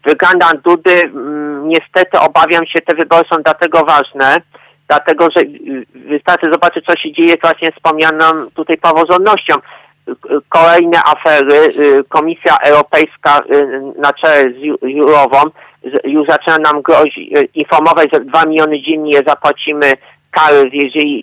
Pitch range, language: 145-170 Hz, Polish